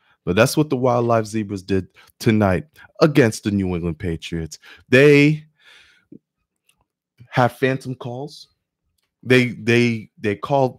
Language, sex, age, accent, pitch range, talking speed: English, male, 20-39, American, 115-150 Hz, 115 wpm